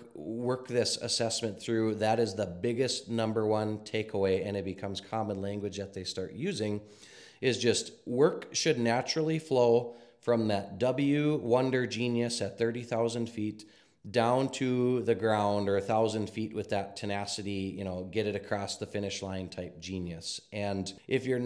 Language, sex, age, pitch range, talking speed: English, male, 30-49, 105-130 Hz, 160 wpm